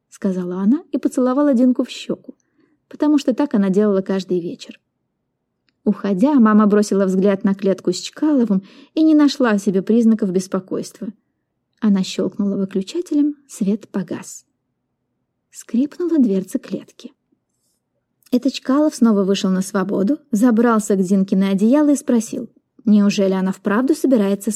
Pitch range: 200-275 Hz